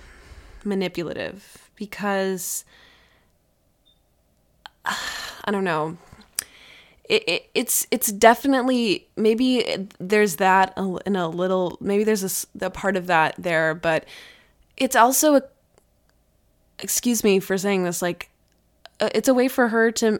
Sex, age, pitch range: female, 20-39, 180-230 Hz